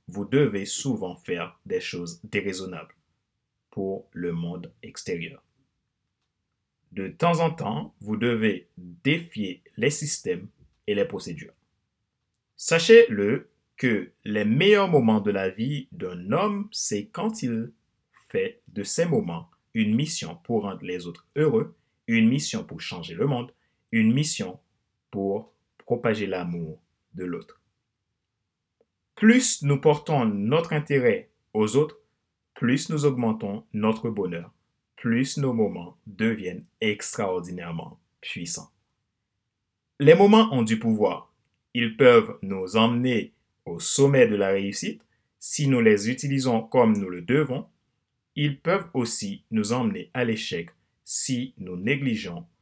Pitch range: 100-145 Hz